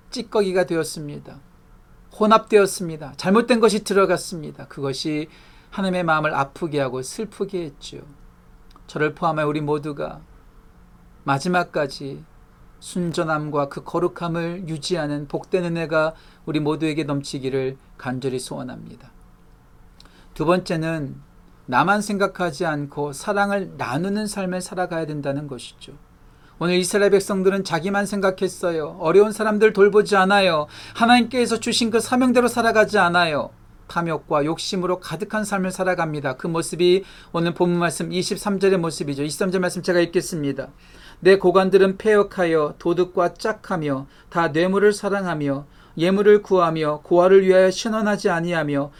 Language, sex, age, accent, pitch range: Korean, male, 40-59, native, 150-200 Hz